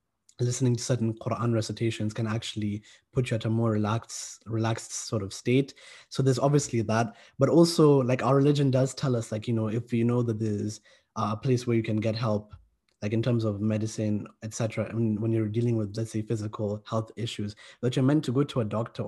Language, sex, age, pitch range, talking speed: English, male, 20-39, 110-125 Hz, 215 wpm